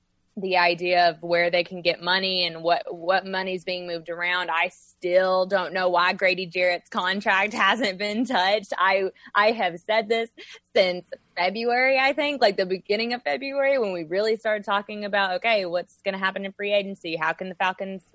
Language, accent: English, American